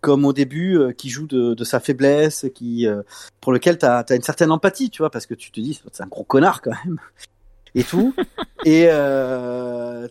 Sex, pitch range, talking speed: male, 115-160 Hz, 210 wpm